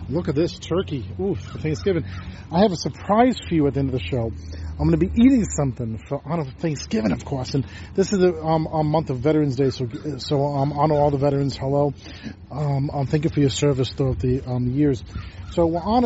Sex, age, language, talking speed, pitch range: male, 40-59, English, 230 wpm, 115-170 Hz